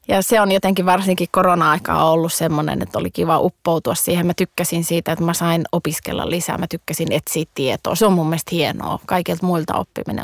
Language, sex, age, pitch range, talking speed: Finnish, female, 30-49, 165-190 Hz, 195 wpm